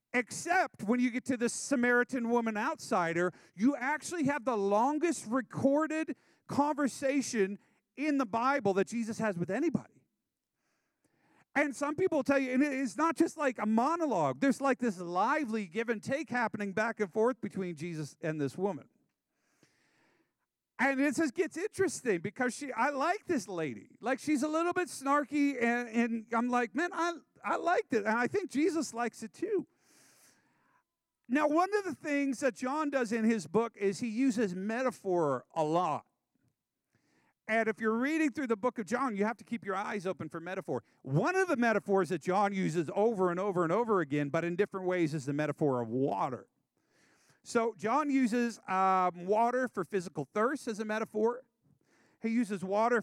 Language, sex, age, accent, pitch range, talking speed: English, male, 40-59, American, 195-275 Hz, 175 wpm